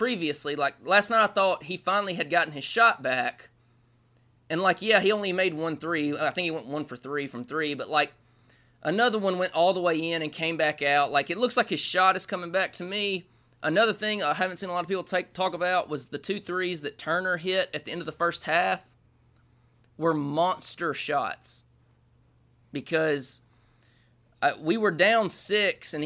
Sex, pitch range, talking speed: male, 140-185 Hz, 205 wpm